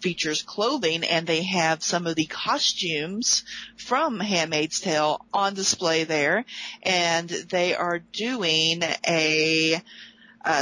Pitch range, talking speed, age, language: 170-210 Hz, 120 wpm, 40-59, English